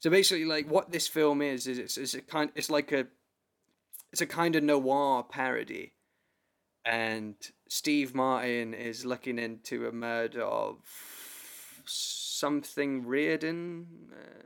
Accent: British